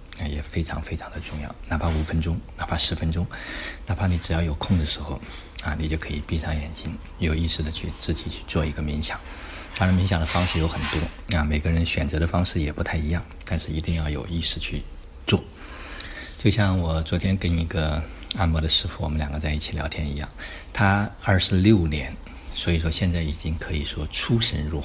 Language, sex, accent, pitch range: Chinese, male, native, 75-90 Hz